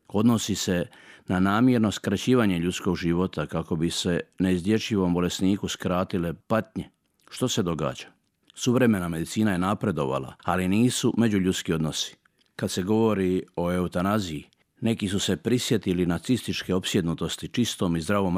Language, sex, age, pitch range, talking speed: Croatian, male, 50-69, 90-110 Hz, 125 wpm